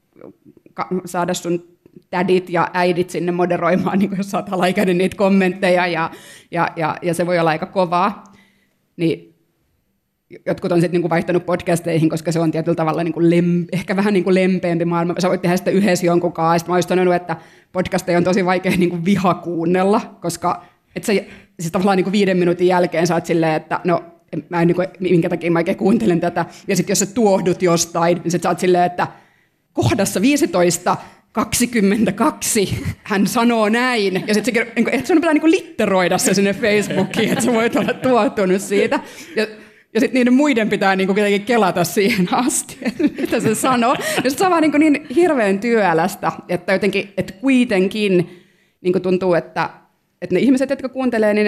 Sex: female